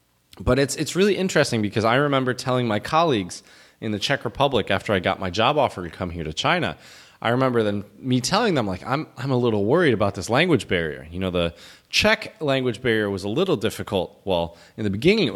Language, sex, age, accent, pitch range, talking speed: English, male, 20-39, American, 100-150 Hz, 225 wpm